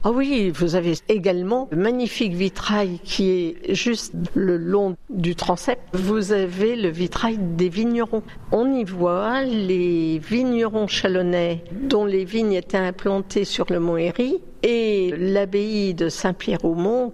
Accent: French